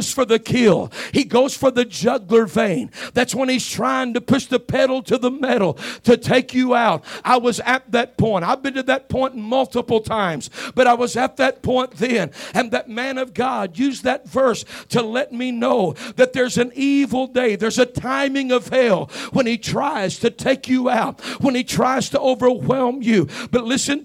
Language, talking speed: English, 200 wpm